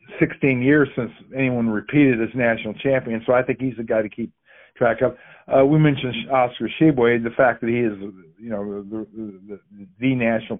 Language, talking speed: English, 195 wpm